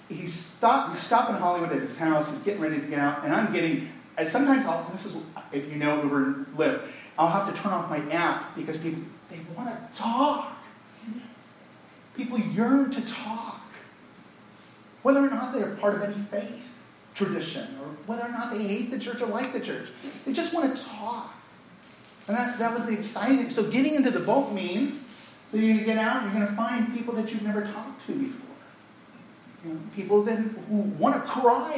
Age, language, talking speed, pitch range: 40-59, English, 205 wpm, 165-240 Hz